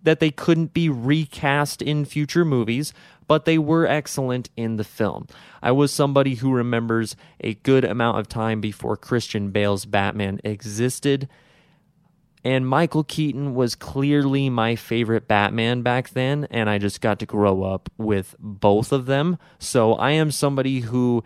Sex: male